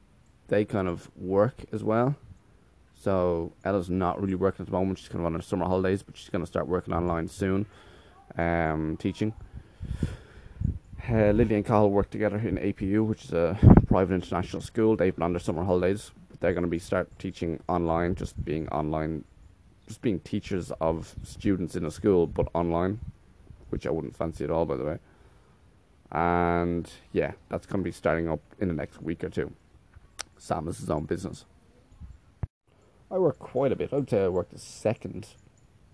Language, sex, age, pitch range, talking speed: English, male, 20-39, 85-100 Hz, 185 wpm